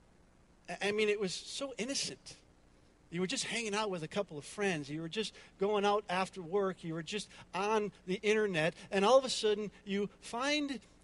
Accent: American